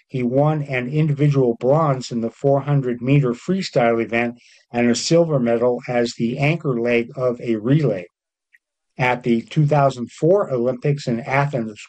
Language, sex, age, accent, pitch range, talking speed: English, male, 50-69, American, 125-150 Hz, 135 wpm